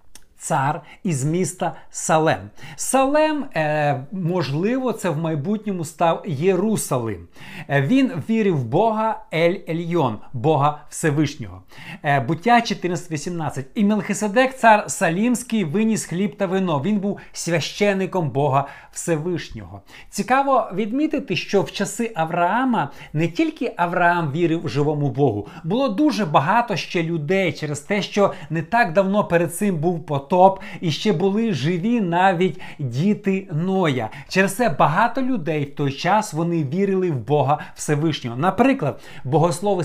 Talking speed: 125 wpm